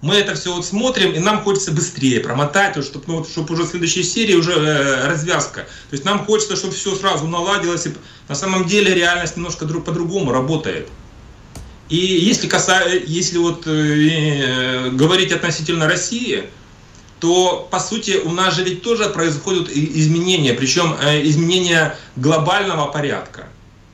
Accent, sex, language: native, male, Russian